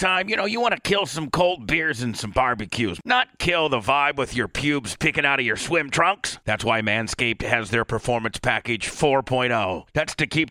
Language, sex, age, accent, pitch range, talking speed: English, male, 40-59, American, 125-165 Hz, 210 wpm